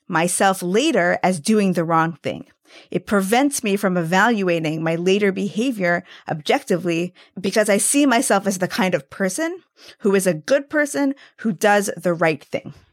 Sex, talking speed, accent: female, 165 wpm, American